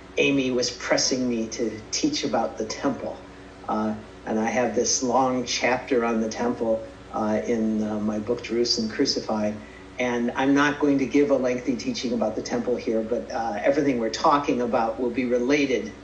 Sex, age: male, 50-69